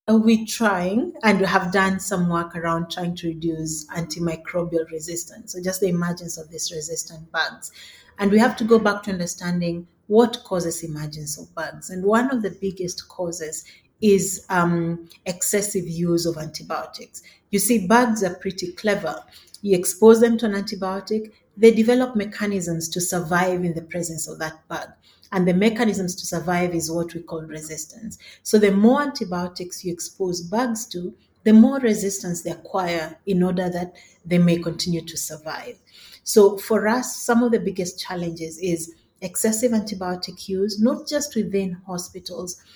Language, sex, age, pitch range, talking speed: English, female, 30-49, 170-210 Hz, 165 wpm